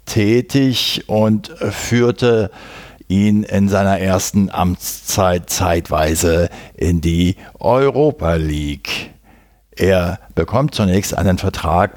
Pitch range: 90-120 Hz